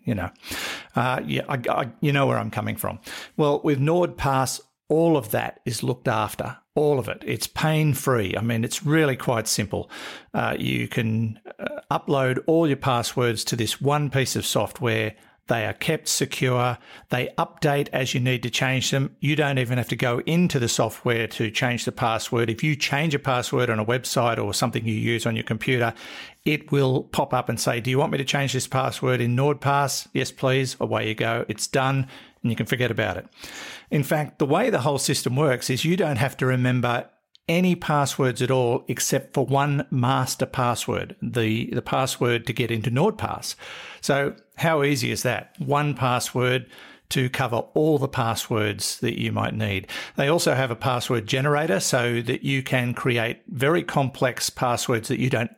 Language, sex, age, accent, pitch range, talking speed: English, male, 50-69, Australian, 120-145 Hz, 190 wpm